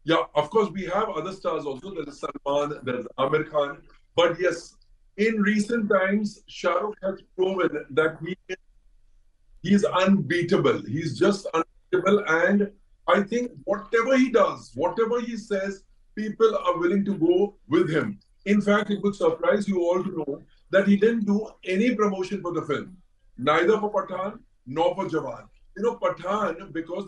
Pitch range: 160-205 Hz